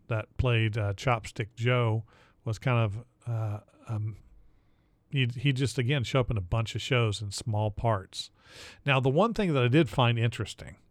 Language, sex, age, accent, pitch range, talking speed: English, male, 40-59, American, 110-130 Hz, 180 wpm